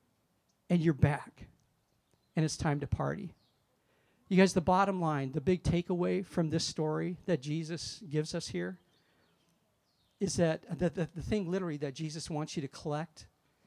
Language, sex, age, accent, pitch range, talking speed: English, male, 50-69, American, 155-185 Hz, 160 wpm